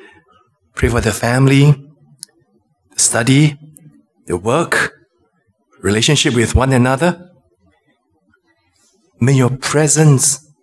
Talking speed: 85 wpm